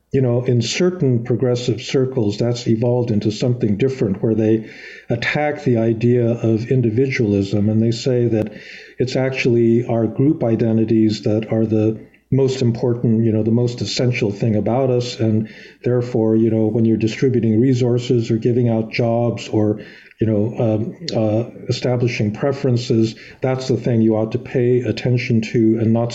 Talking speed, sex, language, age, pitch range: 160 wpm, male, English, 50-69, 110-125 Hz